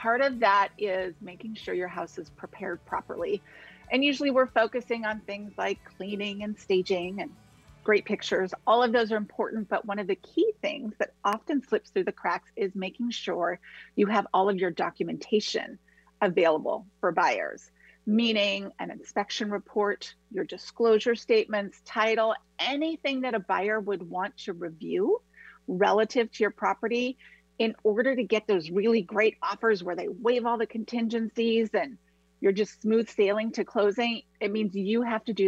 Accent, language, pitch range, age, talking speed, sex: American, English, 195-240 Hz, 30-49, 170 wpm, female